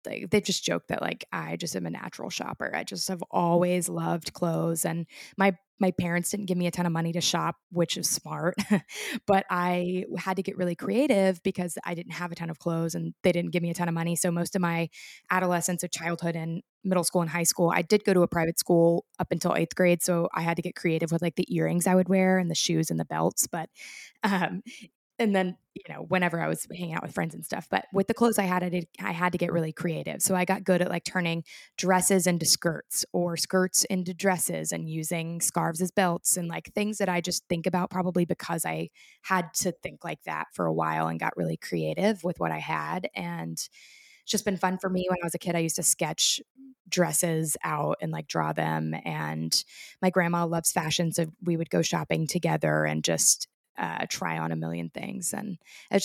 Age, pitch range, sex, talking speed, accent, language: 20-39, 165-185 Hz, female, 235 wpm, American, English